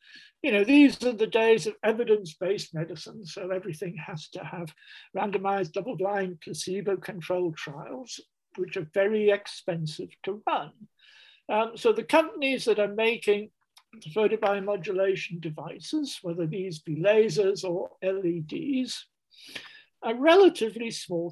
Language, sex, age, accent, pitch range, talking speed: English, male, 60-79, British, 180-235 Hz, 120 wpm